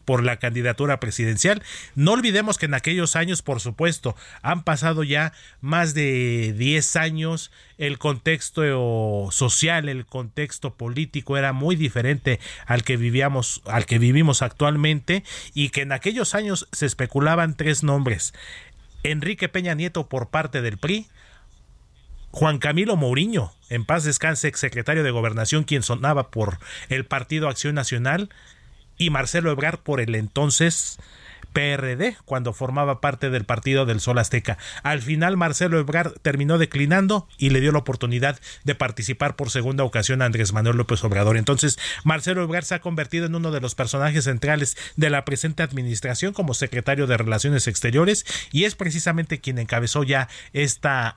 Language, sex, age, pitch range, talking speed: Spanish, male, 40-59, 120-160 Hz, 155 wpm